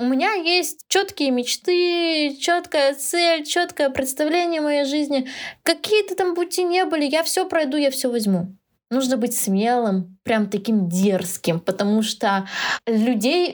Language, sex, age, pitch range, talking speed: Russian, female, 20-39, 215-290 Hz, 140 wpm